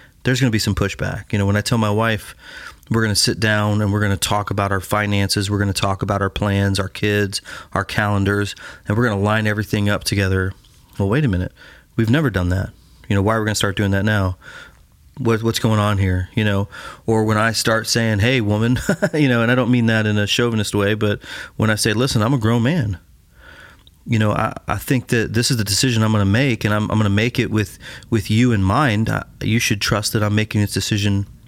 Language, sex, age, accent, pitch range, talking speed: English, male, 30-49, American, 105-120 Hz, 250 wpm